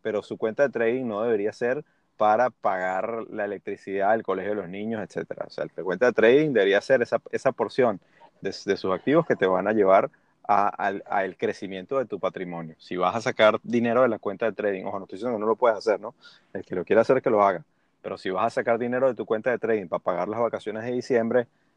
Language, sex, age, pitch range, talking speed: Spanish, male, 30-49, 100-135 Hz, 255 wpm